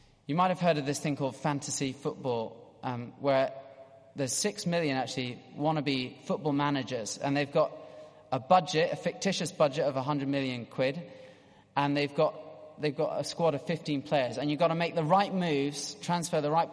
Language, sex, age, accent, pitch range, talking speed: English, male, 30-49, British, 135-195 Hz, 185 wpm